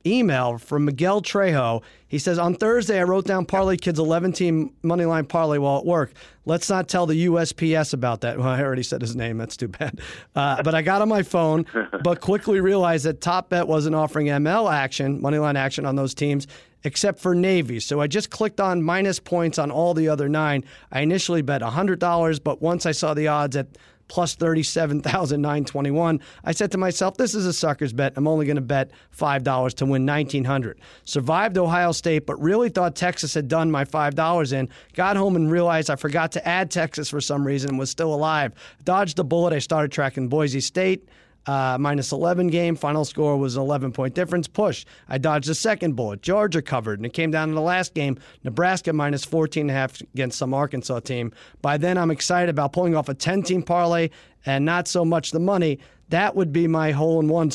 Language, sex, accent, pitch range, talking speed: English, male, American, 140-175 Hz, 205 wpm